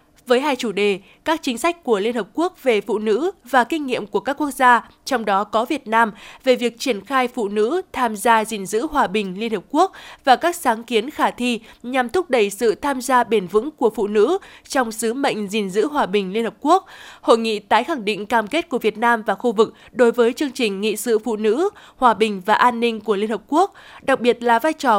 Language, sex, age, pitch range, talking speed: Vietnamese, female, 20-39, 215-270 Hz, 245 wpm